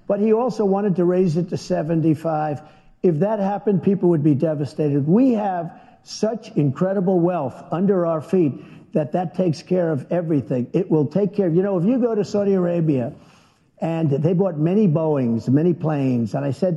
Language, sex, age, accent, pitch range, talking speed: English, male, 50-69, American, 165-215 Hz, 185 wpm